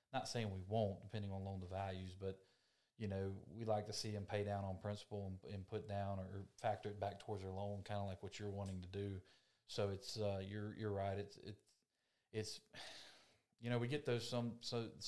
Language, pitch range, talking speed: English, 95-110 Hz, 225 wpm